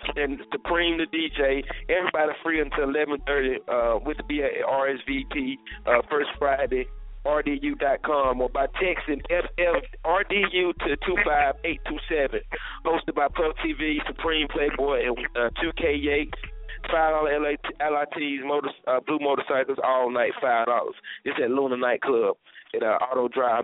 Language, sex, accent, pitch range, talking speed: English, male, American, 130-165 Hz, 180 wpm